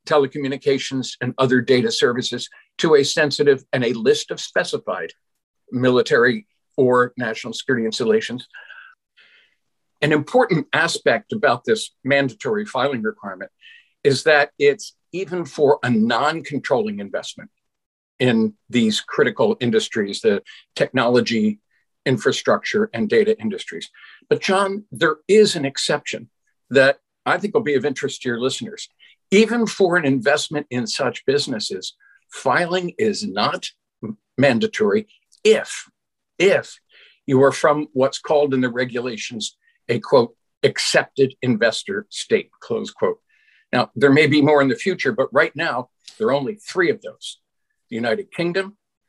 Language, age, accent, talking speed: English, 50-69, American, 130 wpm